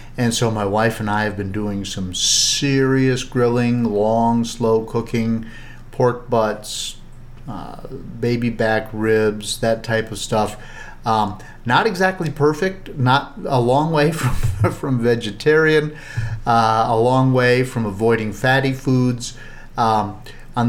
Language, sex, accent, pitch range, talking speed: English, male, American, 105-120 Hz, 135 wpm